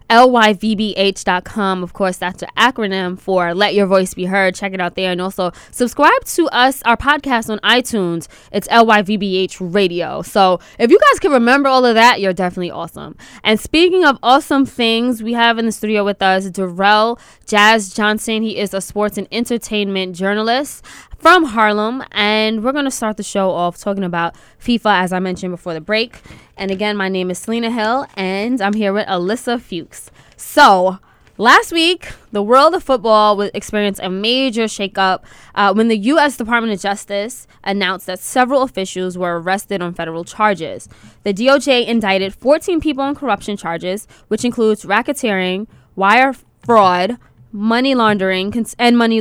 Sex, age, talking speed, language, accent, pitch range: female, 20-39, 180 wpm, English, American, 190-240 Hz